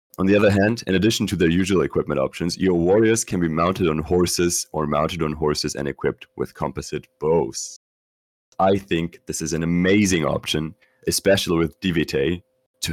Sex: male